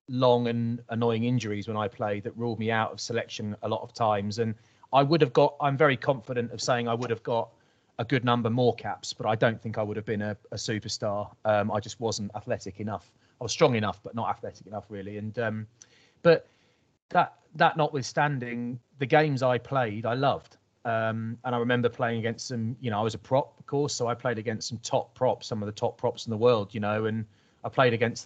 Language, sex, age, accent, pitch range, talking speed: English, male, 30-49, British, 105-120 Hz, 235 wpm